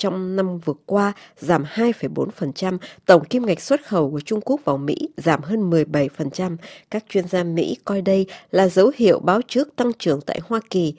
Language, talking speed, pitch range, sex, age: Vietnamese, 190 wpm, 165-210 Hz, female, 20-39